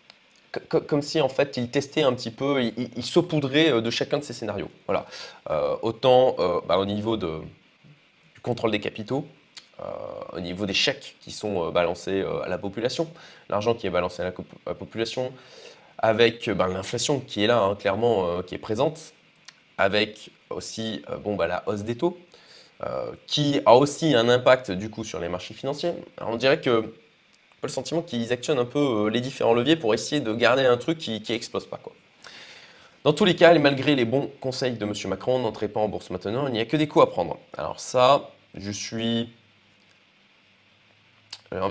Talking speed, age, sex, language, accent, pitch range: 195 wpm, 20-39, male, French, French, 100-135 Hz